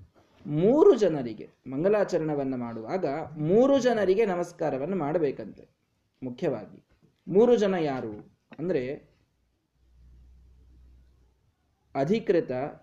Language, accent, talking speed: Kannada, native, 65 wpm